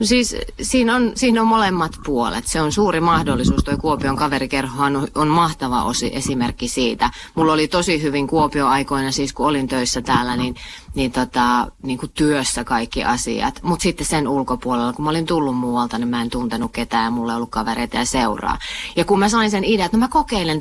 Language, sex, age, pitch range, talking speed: Finnish, female, 30-49, 125-170 Hz, 200 wpm